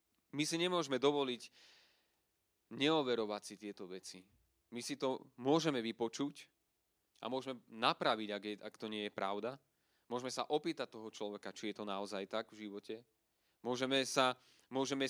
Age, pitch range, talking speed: 30-49, 115-140 Hz, 150 wpm